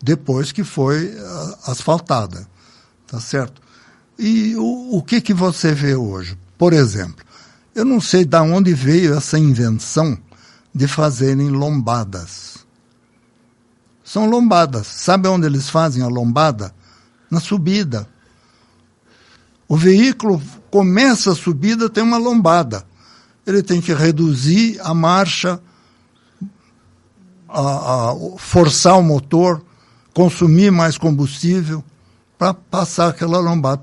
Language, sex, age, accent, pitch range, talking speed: Portuguese, male, 60-79, Brazilian, 120-180 Hz, 110 wpm